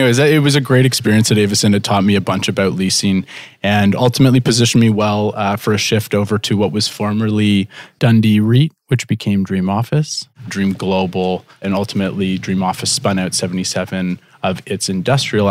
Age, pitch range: 30-49, 90-110 Hz